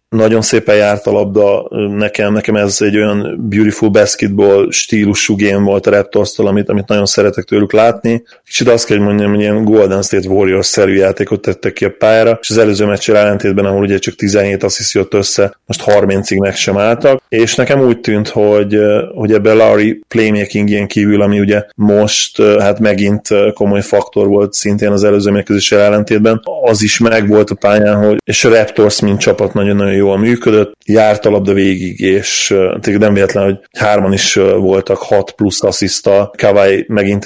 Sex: male